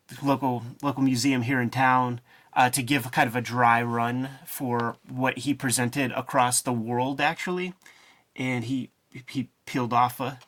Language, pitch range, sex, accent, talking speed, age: English, 125-140 Hz, male, American, 165 wpm, 30-49